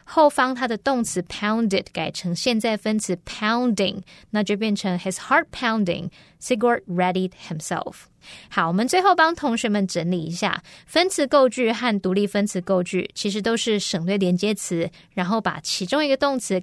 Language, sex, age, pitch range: Chinese, female, 20-39, 180-230 Hz